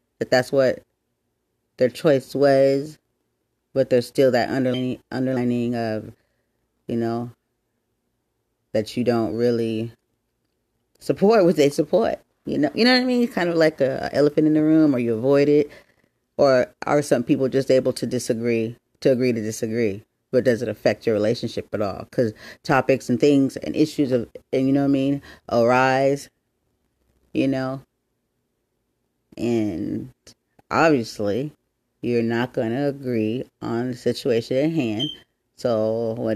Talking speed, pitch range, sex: 155 wpm, 115-140 Hz, female